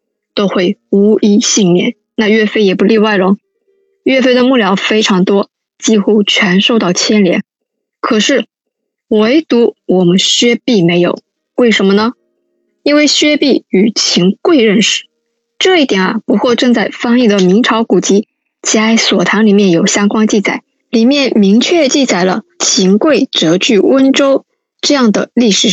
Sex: female